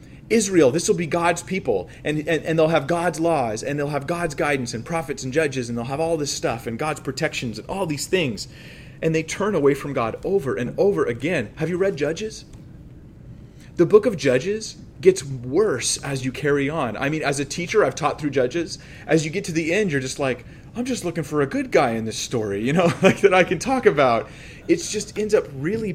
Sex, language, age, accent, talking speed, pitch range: male, English, 30-49, American, 230 wpm, 130-180 Hz